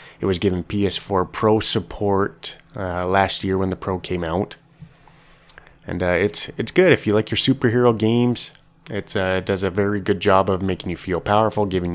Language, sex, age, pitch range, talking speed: English, male, 20-39, 85-105 Hz, 195 wpm